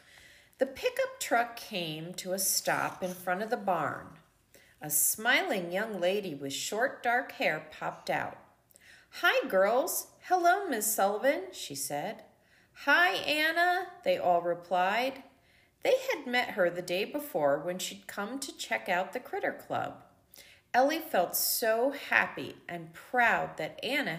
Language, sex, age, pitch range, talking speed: English, female, 40-59, 180-280 Hz, 145 wpm